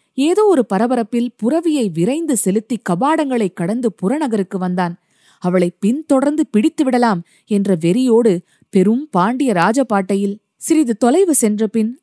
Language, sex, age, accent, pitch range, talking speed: Tamil, female, 30-49, native, 185-245 Hz, 110 wpm